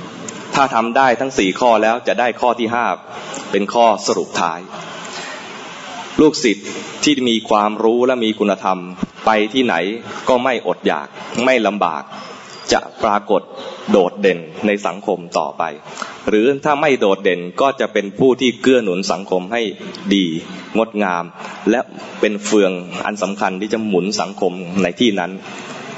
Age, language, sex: 20-39, English, male